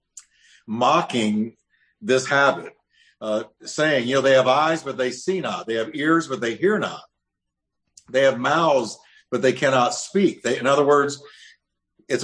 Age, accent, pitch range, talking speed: 50-69, American, 120-160 Hz, 155 wpm